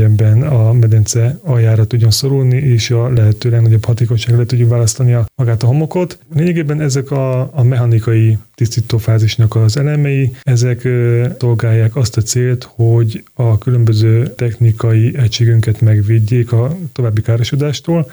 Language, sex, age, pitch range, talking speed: Hungarian, male, 20-39, 110-125 Hz, 130 wpm